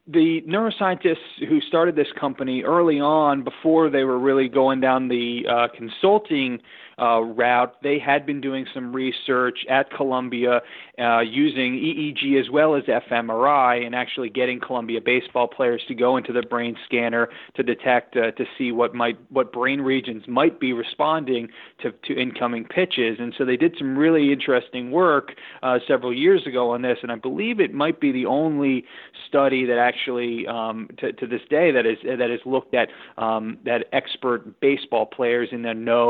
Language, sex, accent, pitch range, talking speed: English, male, American, 120-140 Hz, 180 wpm